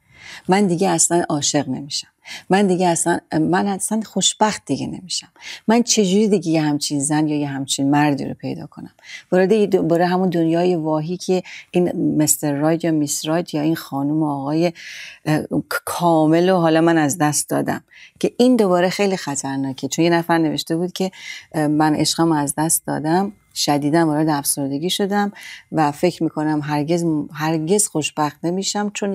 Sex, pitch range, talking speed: female, 150-180 Hz, 160 wpm